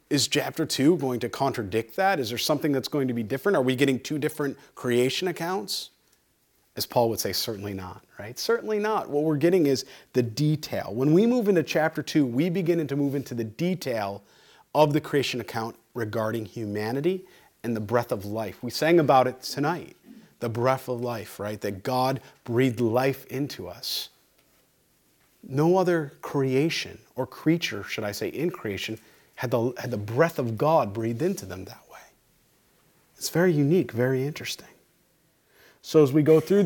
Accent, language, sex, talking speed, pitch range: American, English, male, 175 wpm, 115-155 Hz